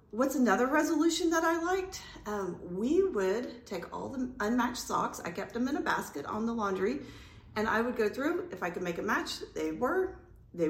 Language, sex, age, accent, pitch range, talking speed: English, female, 40-59, American, 195-270 Hz, 205 wpm